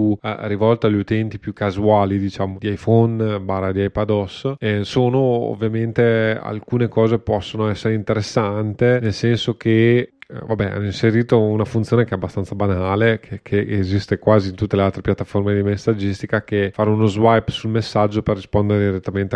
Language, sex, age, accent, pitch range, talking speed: Italian, male, 30-49, native, 100-115 Hz, 155 wpm